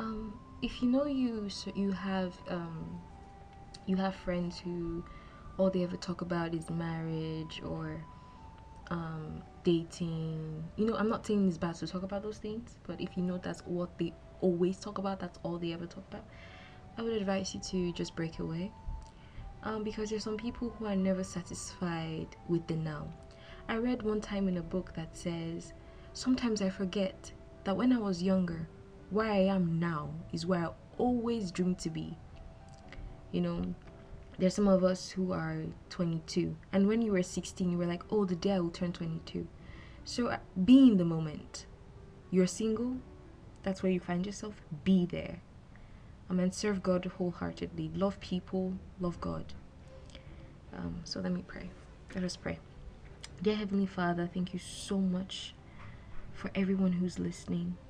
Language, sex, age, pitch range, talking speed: English, female, 20-39, 165-195 Hz, 170 wpm